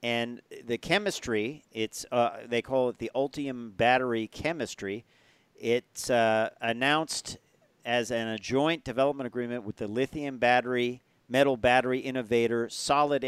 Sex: male